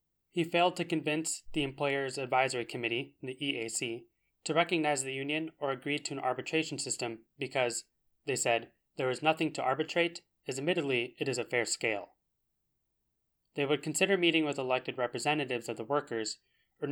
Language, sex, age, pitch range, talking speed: English, male, 20-39, 125-155 Hz, 165 wpm